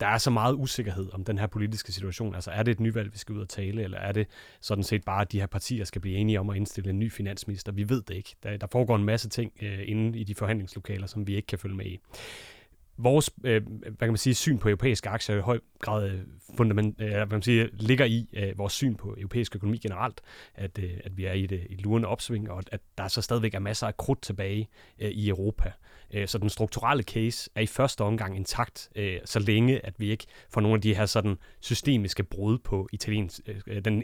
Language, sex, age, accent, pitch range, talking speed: Danish, male, 30-49, native, 100-115 Hz, 230 wpm